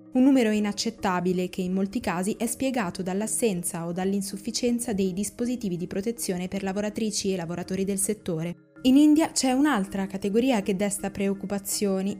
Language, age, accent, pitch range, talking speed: Italian, 20-39, native, 190-235 Hz, 150 wpm